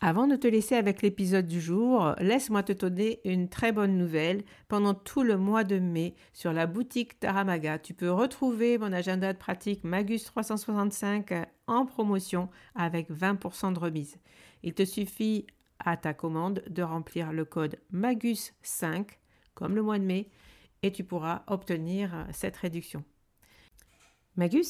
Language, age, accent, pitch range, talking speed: French, 60-79, French, 175-215 Hz, 155 wpm